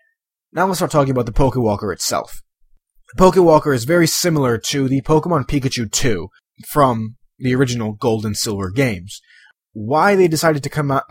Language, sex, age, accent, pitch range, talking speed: English, male, 20-39, American, 110-140 Hz, 160 wpm